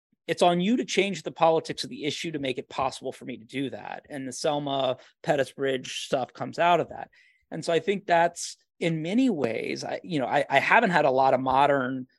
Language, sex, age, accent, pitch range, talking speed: English, male, 30-49, American, 130-160 Hz, 230 wpm